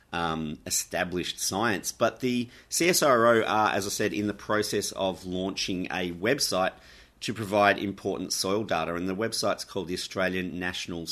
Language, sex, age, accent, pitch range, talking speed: English, male, 30-49, Australian, 85-105 Hz, 155 wpm